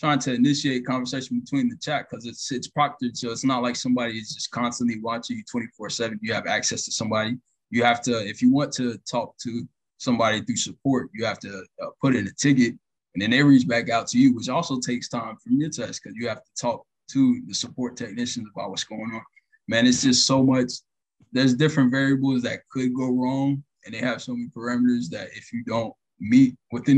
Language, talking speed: English, 220 wpm